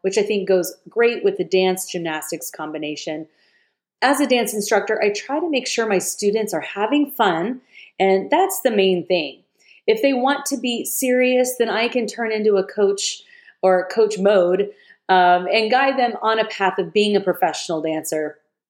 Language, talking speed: English, 185 wpm